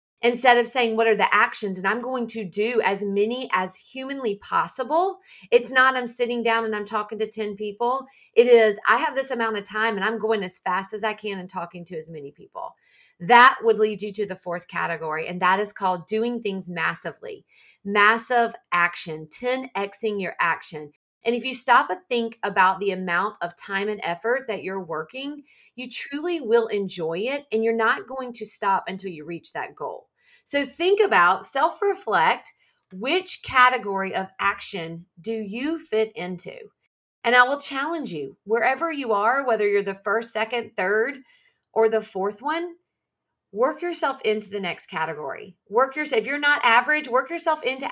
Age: 30-49